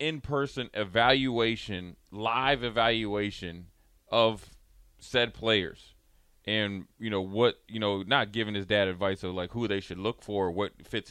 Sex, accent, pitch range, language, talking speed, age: male, American, 95-115 Hz, English, 145 wpm, 30-49